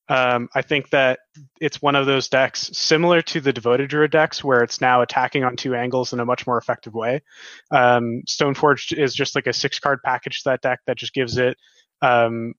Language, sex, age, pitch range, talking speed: English, male, 20-39, 125-150 Hz, 210 wpm